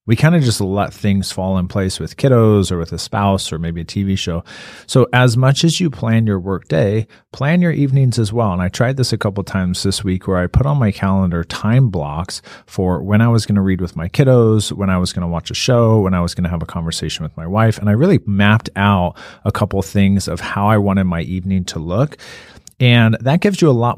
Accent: American